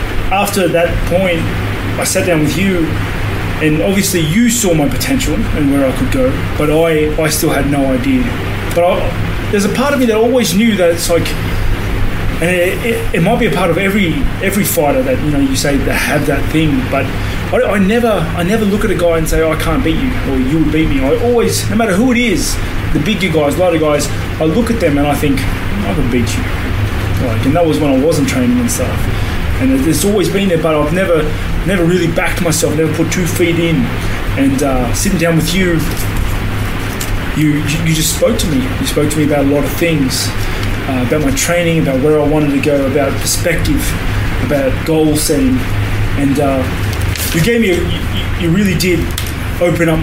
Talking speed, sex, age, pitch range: 215 wpm, male, 20-39, 100-165 Hz